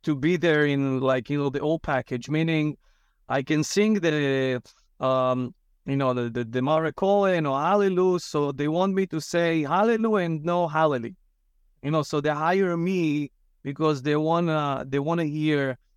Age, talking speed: 30-49, 180 wpm